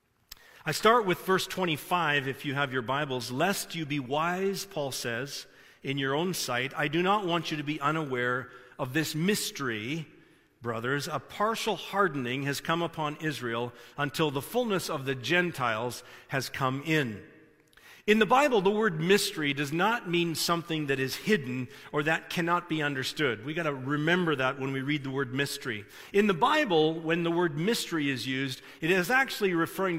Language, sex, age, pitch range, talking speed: English, male, 50-69, 140-185 Hz, 180 wpm